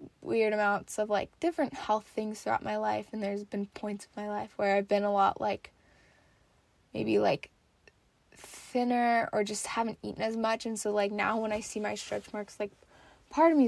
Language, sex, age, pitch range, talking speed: English, female, 10-29, 205-235 Hz, 200 wpm